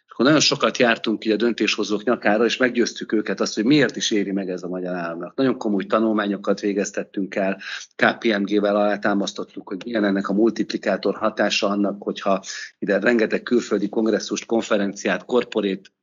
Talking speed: 155 wpm